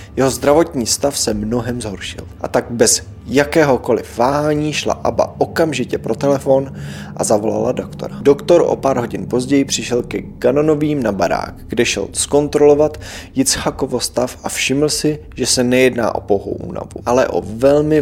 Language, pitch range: Czech, 110-150 Hz